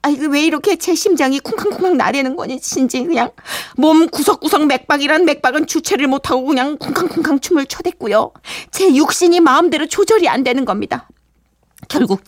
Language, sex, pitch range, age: Korean, female, 195-275 Hz, 40-59